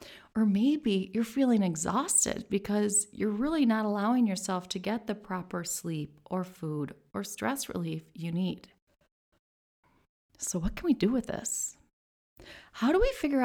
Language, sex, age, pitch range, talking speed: English, female, 30-49, 175-235 Hz, 150 wpm